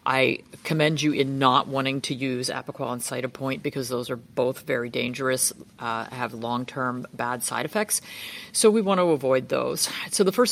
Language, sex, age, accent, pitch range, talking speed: English, female, 40-59, American, 130-165 Hz, 185 wpm